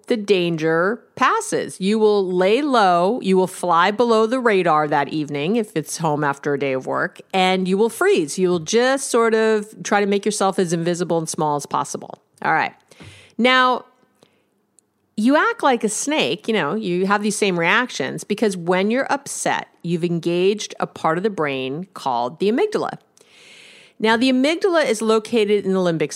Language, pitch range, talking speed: English, 175-230 Hz, 180 wpm